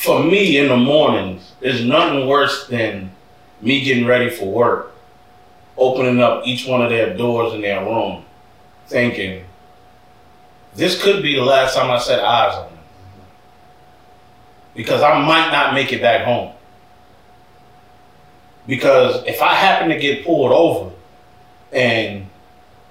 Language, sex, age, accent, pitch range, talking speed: English, male, 30-49, American, 115-160 Hz, 140 wpm